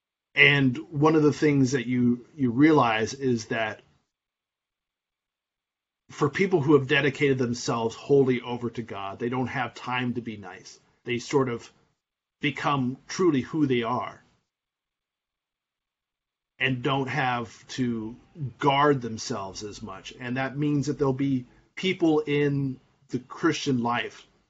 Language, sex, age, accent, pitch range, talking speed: English, male, 30-49, American, 120-140 Hz, 135 wpm